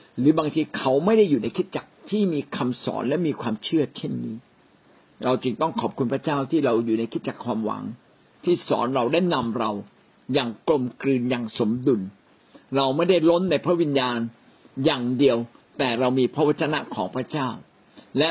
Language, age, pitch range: Thai, 60-79, 125-165 Hz